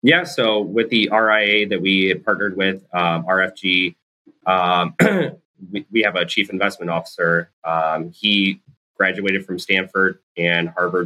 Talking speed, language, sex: 140 wpm, English, male